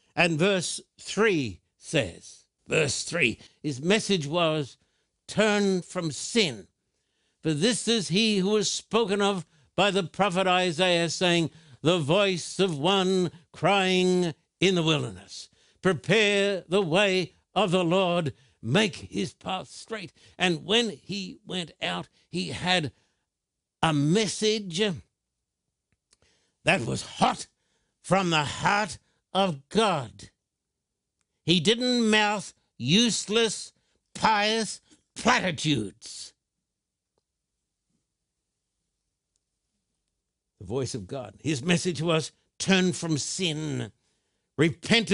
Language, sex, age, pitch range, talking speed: English, male, 60-79, 150-195 Hz, 105 wpm